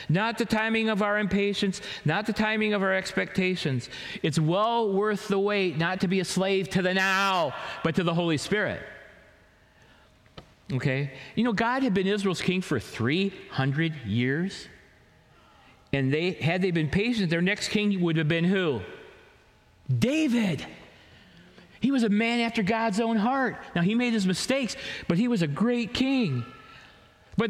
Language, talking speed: English, 165 wpm